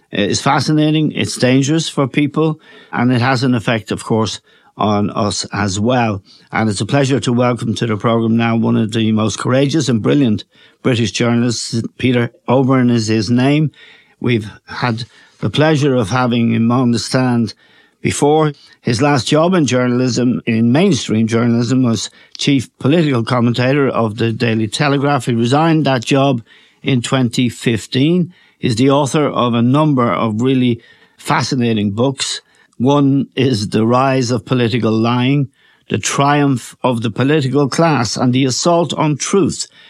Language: English